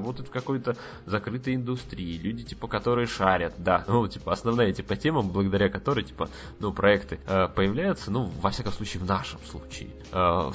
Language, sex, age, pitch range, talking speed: Russian, male, 20-39, 90-120 Hz, 175 wpm